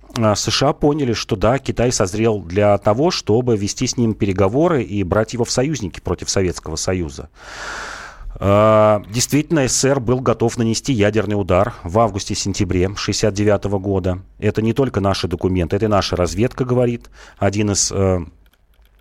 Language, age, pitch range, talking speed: Russian, 30-49, 95-115 Hz, 140 wpm